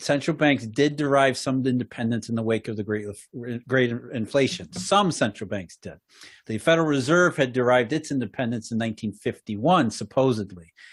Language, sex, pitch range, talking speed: English, male, 125-160 Hz, 155 wpm